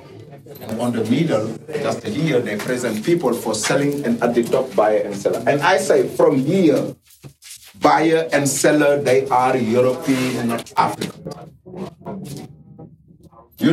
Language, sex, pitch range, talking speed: English, male, 130-200 Hz, 145 wpm